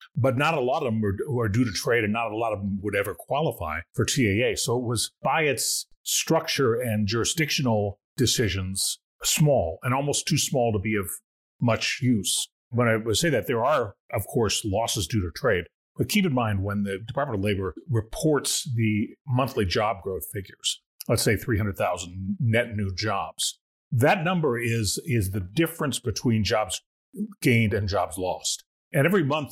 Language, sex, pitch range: English, male, 105-130 Hz